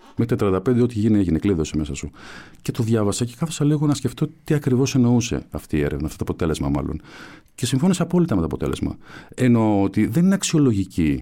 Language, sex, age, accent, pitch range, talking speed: Greek, male, 50-69, native, 85-130 Hz, 205 wpm